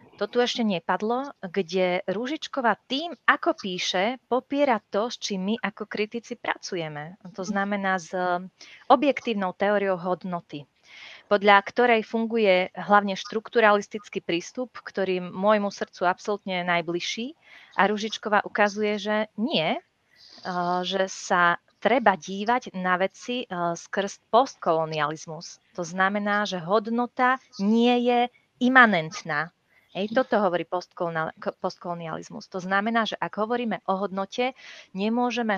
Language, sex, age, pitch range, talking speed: Slovak, female, 30-49, 185-230 Hz, 115 wpm